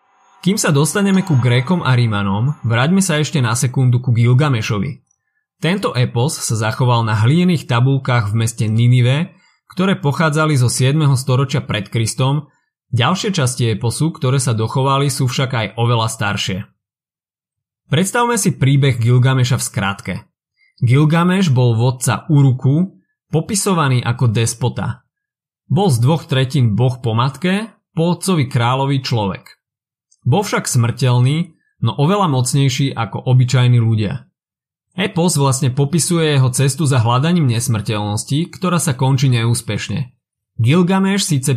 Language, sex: Slovak, male